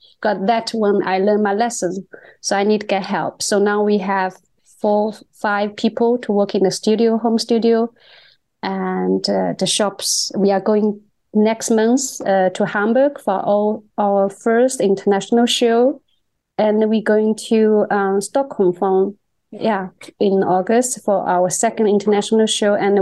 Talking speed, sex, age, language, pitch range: 160 wpm, female, 30-49, English, 200-245 Hz